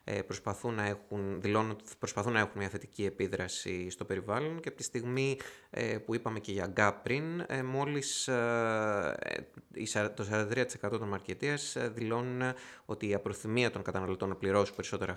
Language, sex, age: Greek, male, 20-39